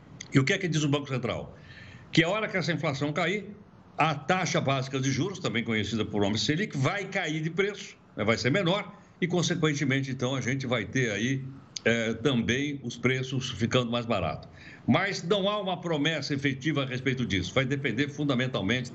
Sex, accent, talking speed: male, Brazilian, 185 wpm